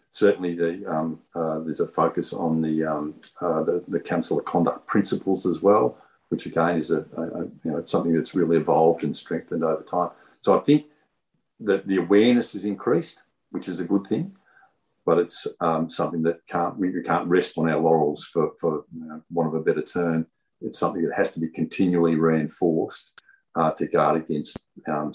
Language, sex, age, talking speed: English, male, 50-69, 200 wpm